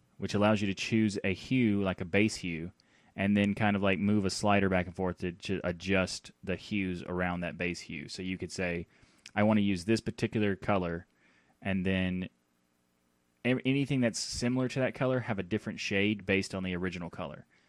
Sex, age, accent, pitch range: male, 20-39, American, 90-110 Hz